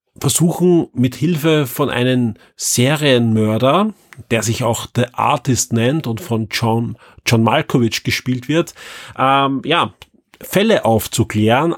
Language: German